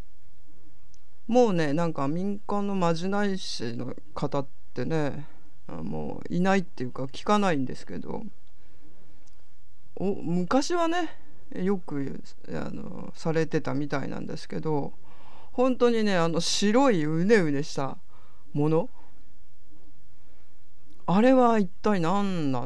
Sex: female